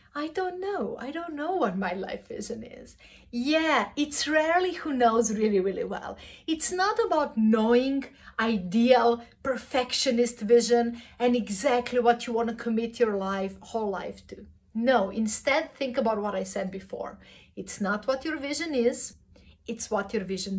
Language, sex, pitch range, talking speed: English, female, 215-275 Hz, 165 wpm